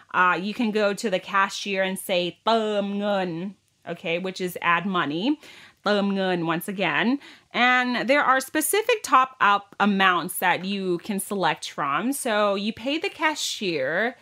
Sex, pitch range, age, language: female, 185-275 Hz, 30-49, Thai